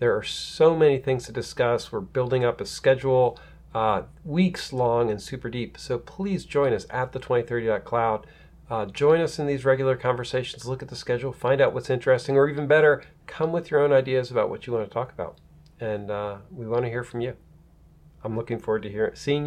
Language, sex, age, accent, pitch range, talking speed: English, male, 40-59, American, 115-150 Hz, 205 wpm